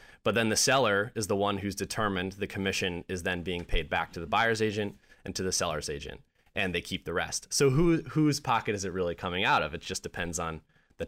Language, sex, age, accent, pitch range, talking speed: English, male, 20-39, American, 90-115 Hz, 240 wpm